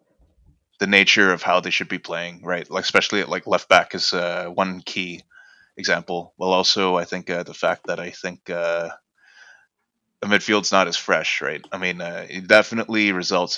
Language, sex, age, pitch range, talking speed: English, male, 20-39, 85-100 Hz, 190 wpm